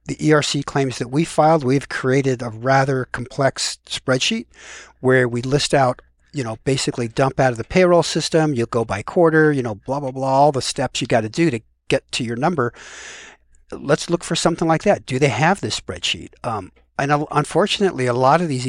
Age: 60-79